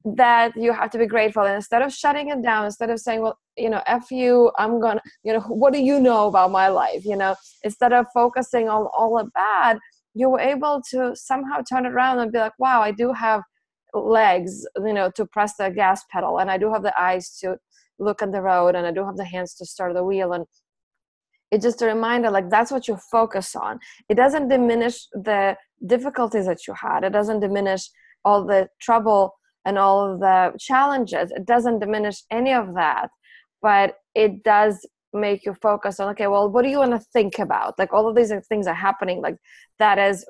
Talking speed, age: 215 wpm, 20-39